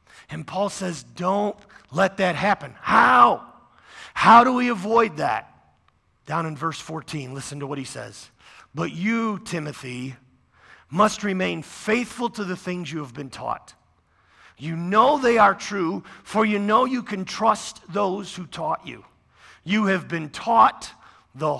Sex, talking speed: male, 155 wpm